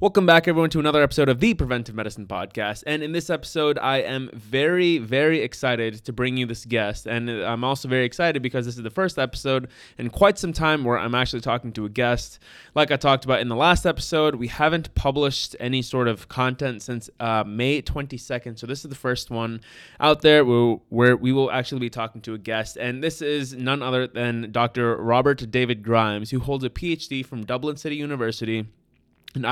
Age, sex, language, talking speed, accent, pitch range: 20-39, male, English, 205 wpm, American, 120-145 Hz